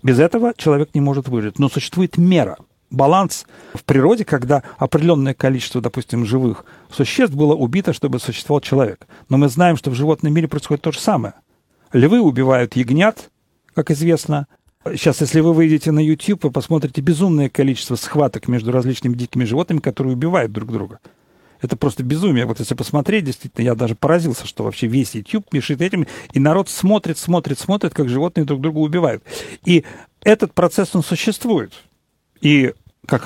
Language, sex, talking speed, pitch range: Russian, male, 165 wpm, 125-160 Hz